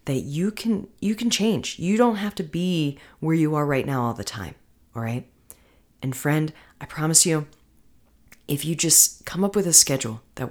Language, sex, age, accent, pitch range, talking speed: English, female, 30-49, American, 130-170 Hz, 200 wpm